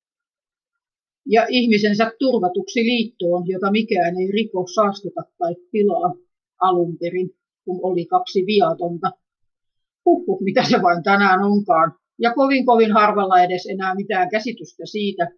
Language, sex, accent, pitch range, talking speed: Finnish, female, native, 180-220 Hz, 120 wpm